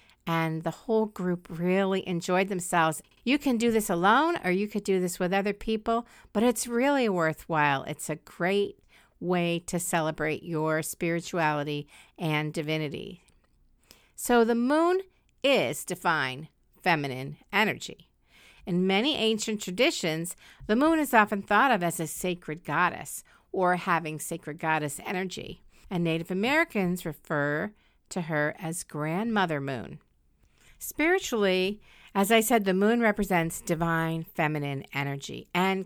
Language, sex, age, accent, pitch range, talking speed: English, female, 50-69, American, 160-210 Hz, 135 wpm